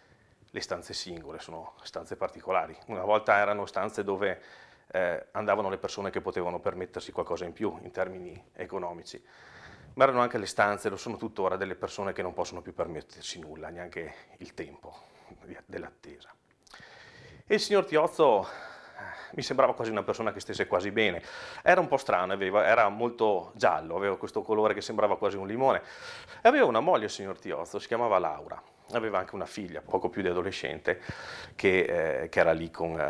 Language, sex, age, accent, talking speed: Italian, male, 30-49, native, 175 wpm